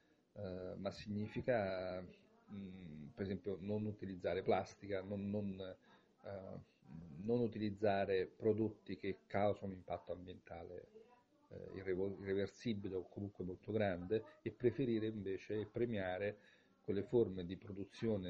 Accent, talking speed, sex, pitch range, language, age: native, 95 wpm, male, 95-120 Hz, Italian, 40-59